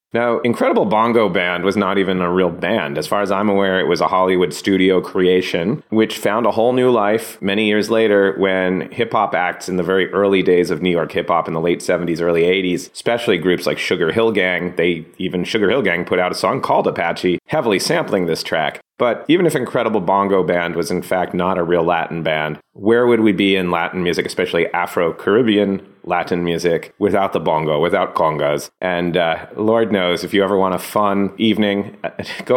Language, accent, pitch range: English, American, 90-100 Hz